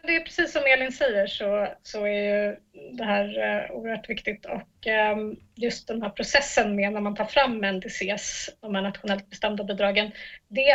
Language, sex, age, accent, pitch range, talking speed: English, female, 30-49, Swedish, 210-250 Hz, 175 wpm